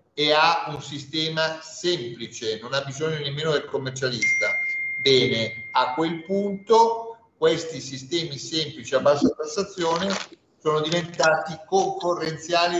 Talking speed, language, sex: 115 wpm, Italian, male